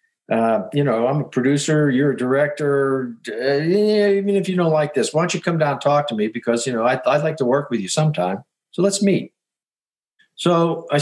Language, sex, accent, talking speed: English, male, American, 225 wpm